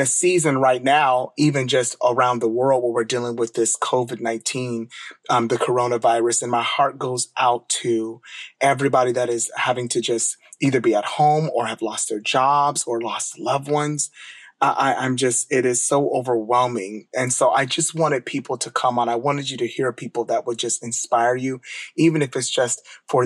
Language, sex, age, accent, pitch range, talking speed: English, male, 30-49, American, 120-145 Hz, 195 wpm